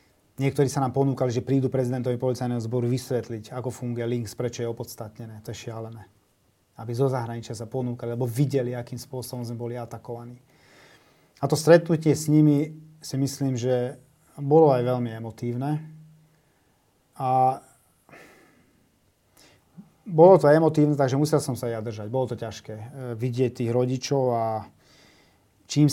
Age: 30-49